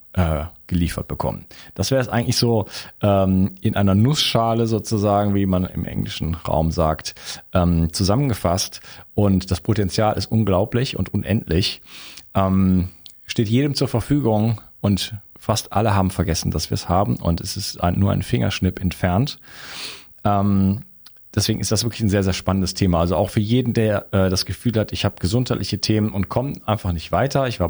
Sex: male